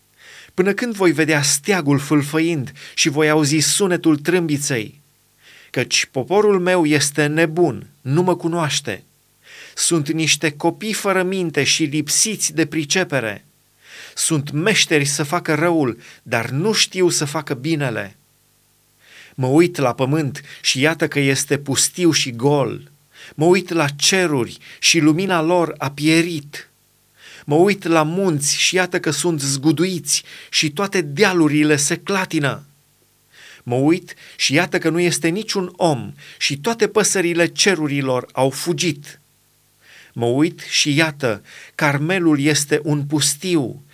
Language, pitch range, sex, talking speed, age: Romanian, 145-175 Hz, male, 130 wpm, 30-49